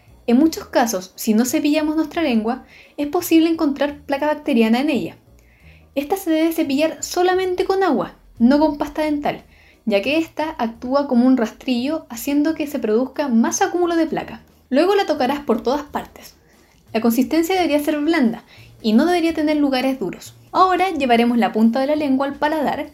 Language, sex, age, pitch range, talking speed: Spanish, female, 10-29, 235-315 Hz, 175 wpm